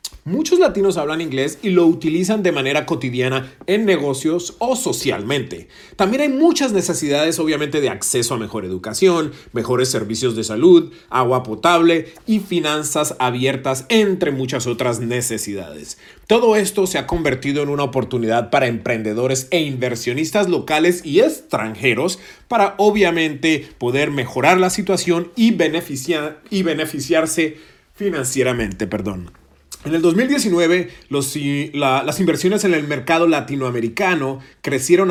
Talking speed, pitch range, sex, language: 125 wpm, 130-170 Hz, male, Spanish